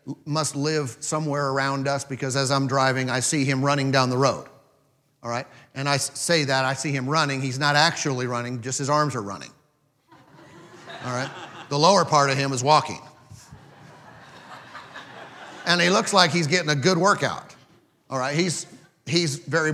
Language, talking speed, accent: English, 175 wpm, American